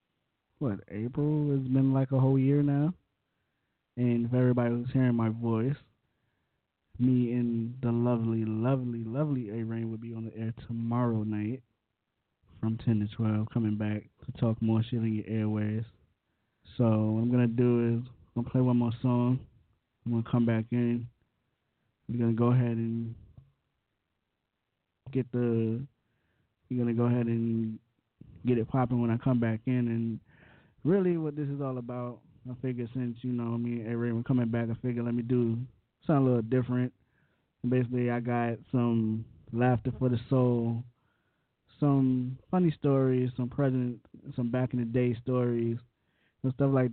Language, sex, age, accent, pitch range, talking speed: English, male, 20-39, American, 115-125 Hz, 170 wpm